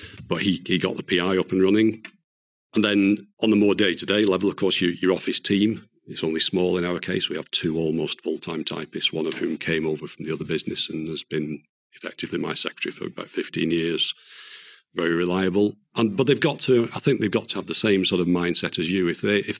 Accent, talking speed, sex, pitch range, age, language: British, 235 wpm, male, 80-100 Hz, 50-69, English